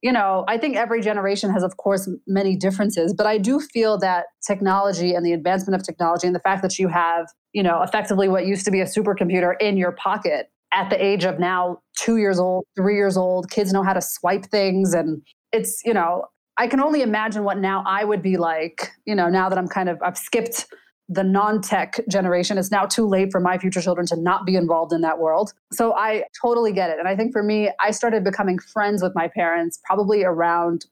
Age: 30-49